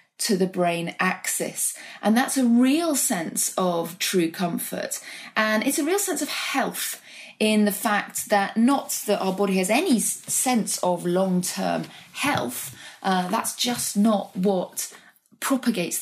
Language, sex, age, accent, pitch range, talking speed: English, female, 30-49, British, 175-225 Hz, 145 wpm